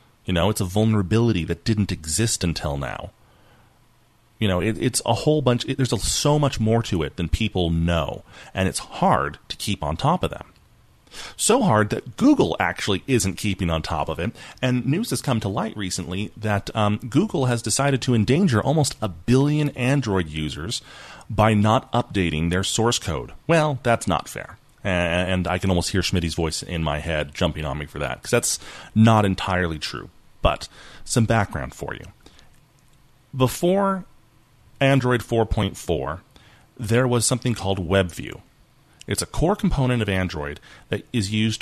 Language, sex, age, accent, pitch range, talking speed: English, male, 30-49, American, 95-125 Hz, 165 wpm